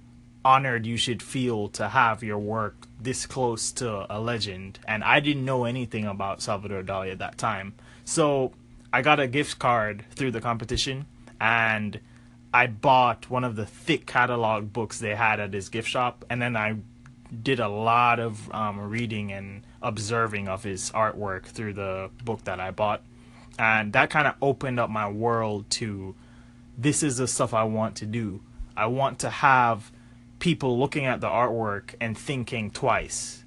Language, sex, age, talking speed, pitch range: English, male, 20-39, 175 wpm, 110-125 Hz